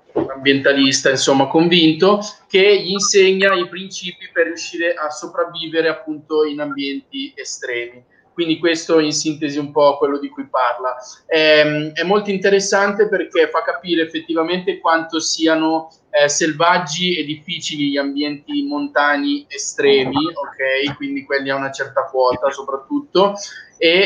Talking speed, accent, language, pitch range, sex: 130 wpm, native, Italian, 140-180 Hz, male